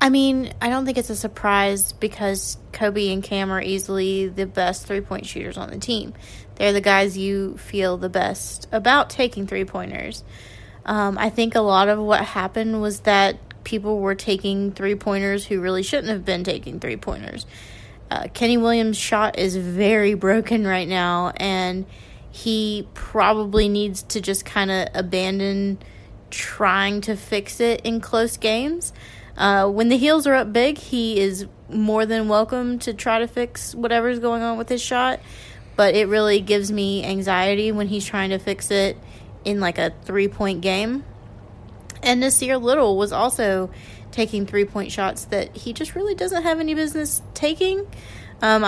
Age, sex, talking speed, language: 20-39, female, 165 wpm, English